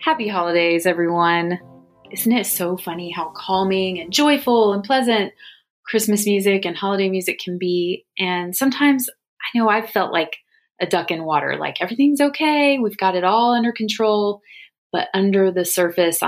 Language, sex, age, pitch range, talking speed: English, female, 30-49, 175-220 Hz, 160 wpm